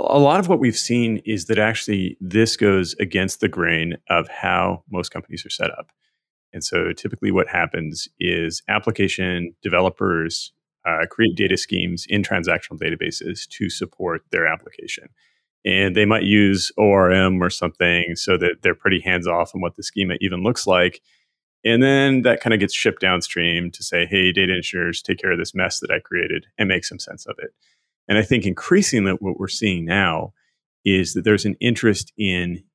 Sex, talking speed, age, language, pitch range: male, 185 wpm, 30-49, English, 90-110 Hz